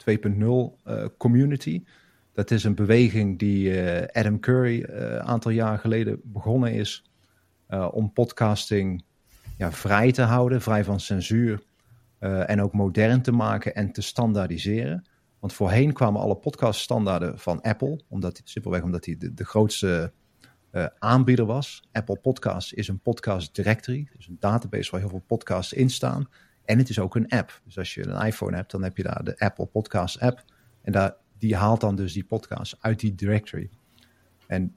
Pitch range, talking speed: 100-120 Hz, 175 wpm